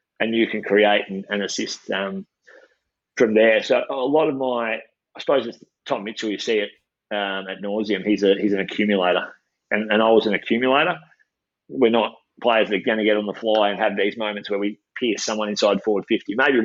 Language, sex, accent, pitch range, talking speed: English, male, Australian, 105-130 Hz, 215 wpm